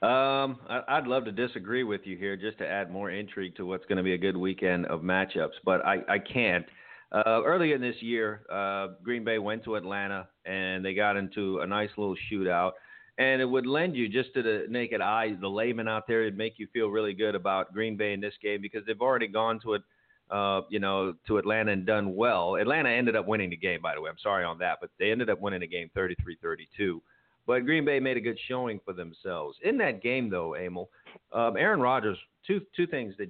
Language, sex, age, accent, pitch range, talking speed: English, male, 40-59, American, 95-115 Hz, 230 wpm